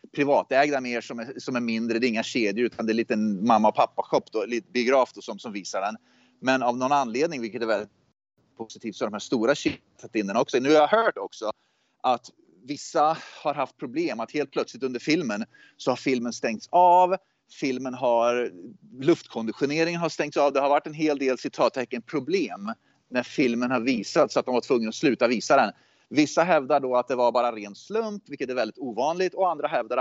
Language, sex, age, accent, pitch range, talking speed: Swedish, male, 30-49, native, 120-150 Hz, 210 wpm